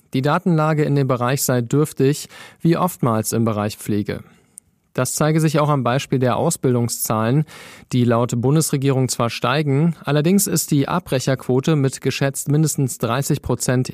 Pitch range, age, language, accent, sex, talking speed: 120-150 Hz, 40-59, German, German, male, 145 wpm